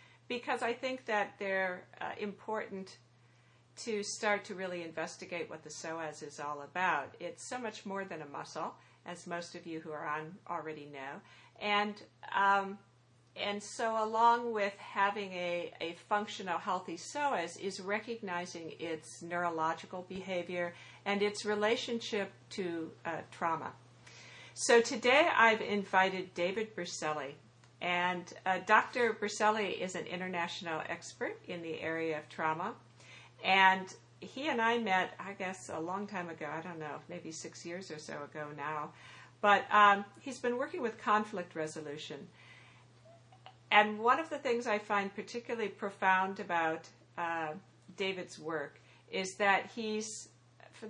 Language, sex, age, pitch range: English, female, 60-79, 160-210 Hz